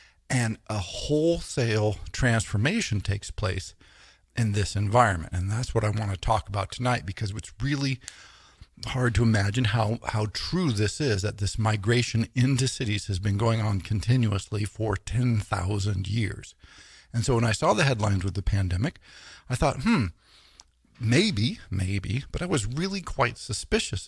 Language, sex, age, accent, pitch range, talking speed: English, male, 50-69, American, 100-125 Hz, 155 wpm